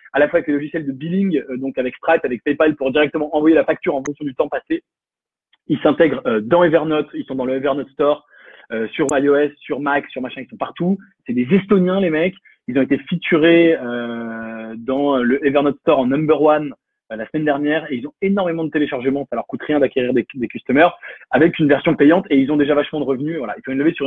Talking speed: 240 wpm